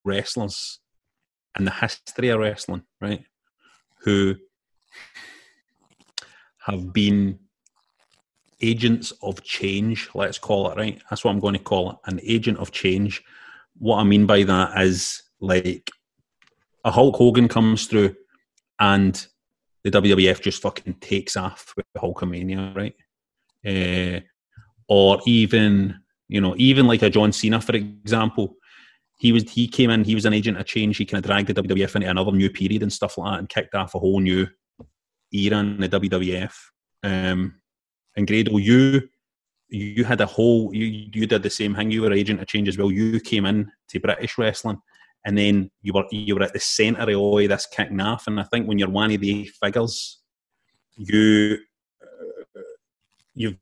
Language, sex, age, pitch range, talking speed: English, male, 30-49, 100-115 Hz, 170 wpm